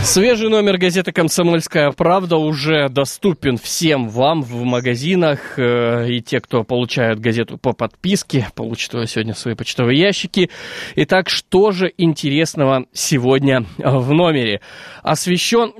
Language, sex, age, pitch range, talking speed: Russian, male, 20-39, 125-175 Hz, 120 wpm